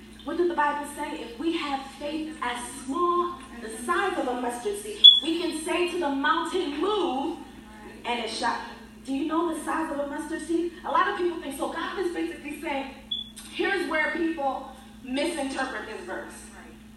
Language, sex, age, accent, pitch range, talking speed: English, female, 20-39, American, 275-365 Hz, 185 wpm